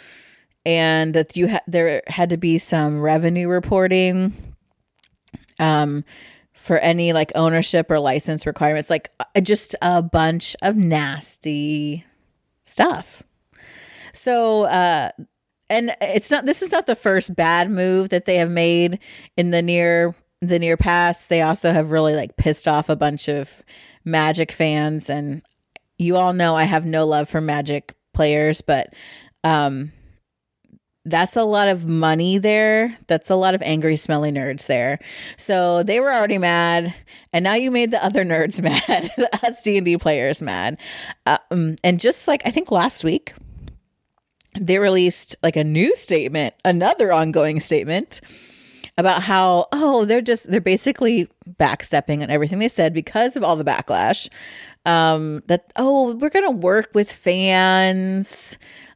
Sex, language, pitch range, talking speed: female, English, 155-195 Hz, 150 wpm